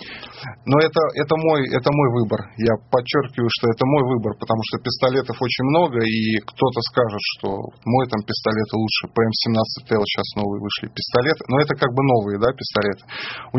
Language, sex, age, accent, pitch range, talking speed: Russian, male, 20-39, native, 110-130 Hz, 170 wpm